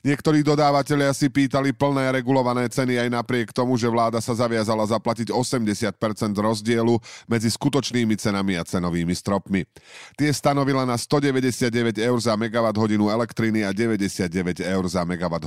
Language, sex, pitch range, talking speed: Slovak, male, 95-120 Hz, 145 wpm